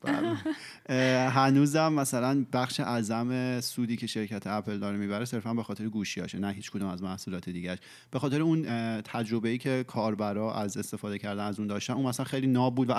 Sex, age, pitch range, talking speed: male, 30-49, 105-130 Hz, 180 wpm